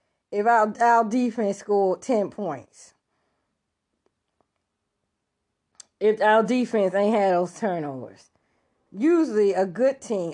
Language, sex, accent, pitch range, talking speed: English, female, American, 160-220 Hz, 105 wpm